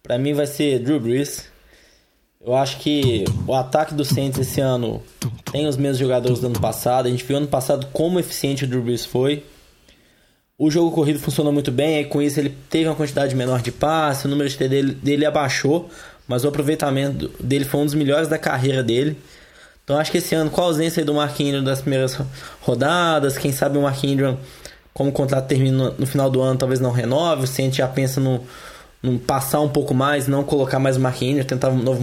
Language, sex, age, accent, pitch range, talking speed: Portuguese, male, 10-29, Brazilian, 135-150 Hz, 215 wpm